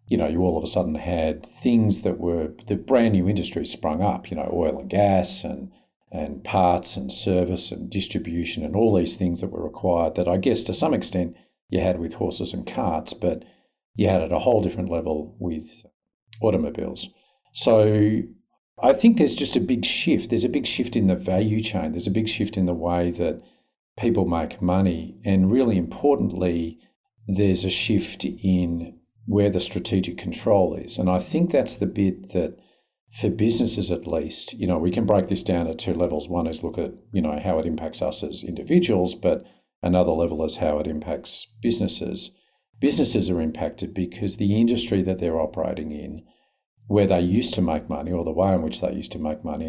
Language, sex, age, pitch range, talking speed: English, male, 50-69, 85-105 Hz, 200 wpm